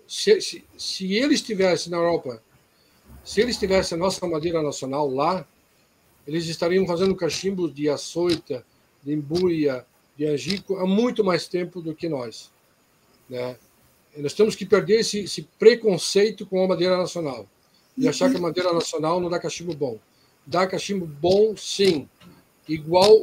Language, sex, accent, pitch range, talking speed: Portuguese, male, Brazilian, 150-195 Hz, 155 wpm